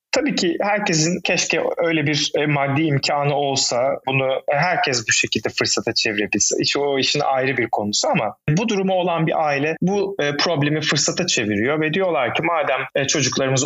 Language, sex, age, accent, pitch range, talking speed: Turkish, male, 30-49, native, 140-185 Hz, 155 wpm